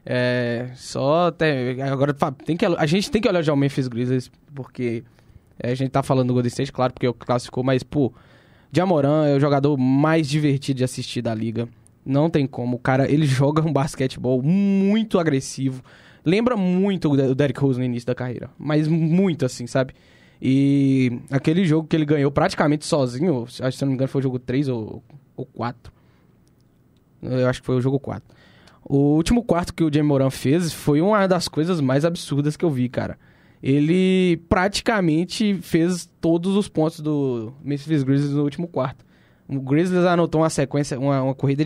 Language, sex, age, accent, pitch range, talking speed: Portuguese, male, 10-29, Brazilian, 130-170 Hz, 185 wpm